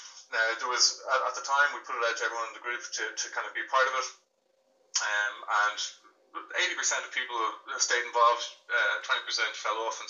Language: English